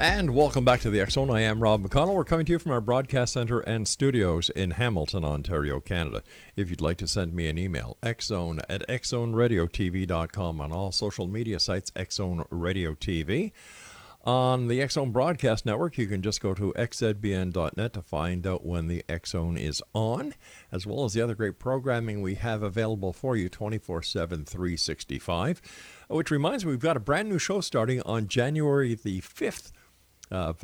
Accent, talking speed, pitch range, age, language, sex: American, 180 wpm, 85-125 Hz, 50-69, English, male